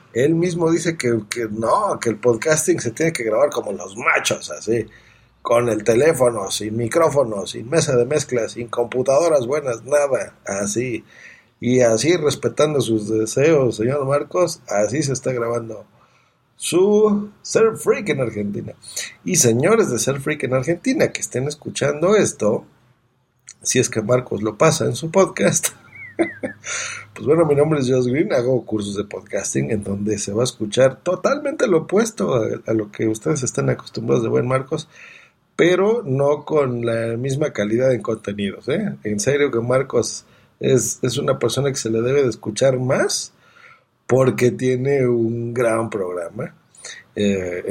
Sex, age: male, 50-69